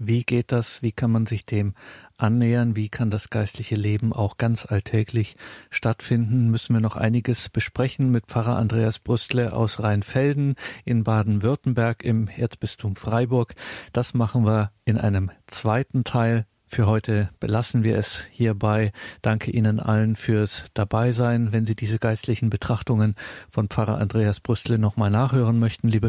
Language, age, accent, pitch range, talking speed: German, 50-69, German, 105-120 Hz, 150 wpm